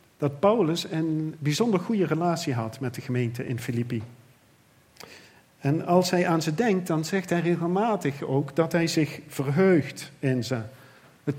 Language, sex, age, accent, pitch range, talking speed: Dutch, male, 50-69, Dutch, 135-190 Hz, 160 wpm